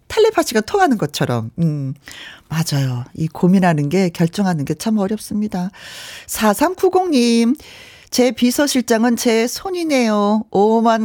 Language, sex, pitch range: Korean, female, 165-240 Hz